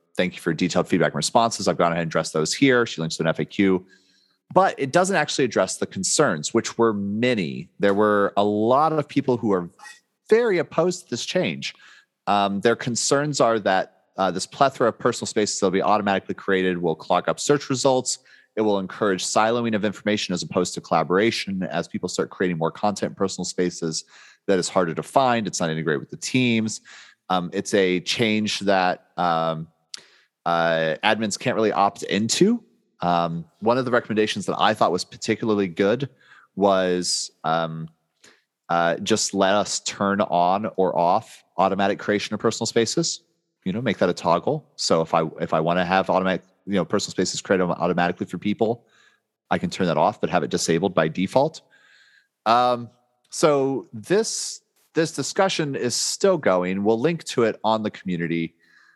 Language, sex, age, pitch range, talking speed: English, male, 30-49, 90-125 Hz, 185 wpm